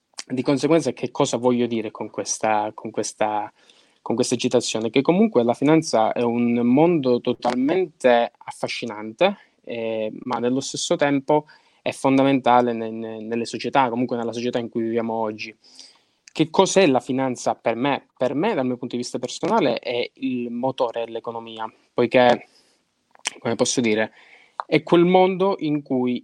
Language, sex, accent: Italian, male, native